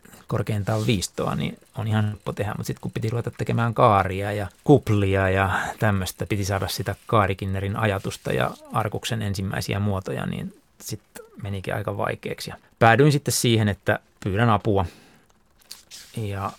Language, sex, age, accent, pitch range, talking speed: Finnish, male, 20-39, native, 100-115 Hz, 140 wpm